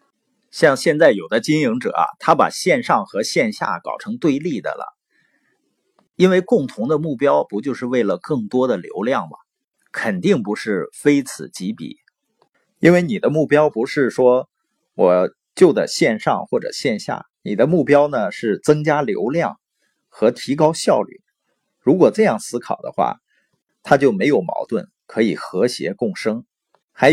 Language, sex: Chinese, male